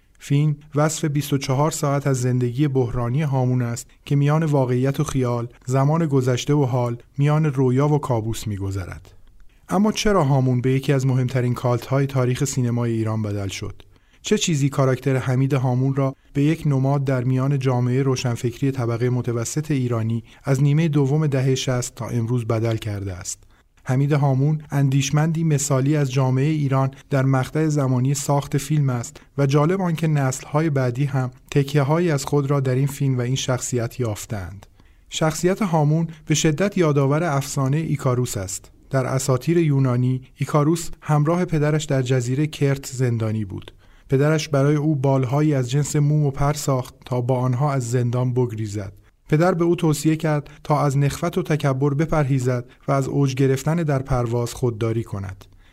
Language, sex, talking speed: Persian, male, 155 wpm